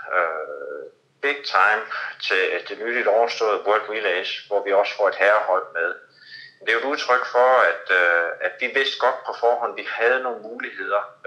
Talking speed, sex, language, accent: 195 wpm, male, Danish, native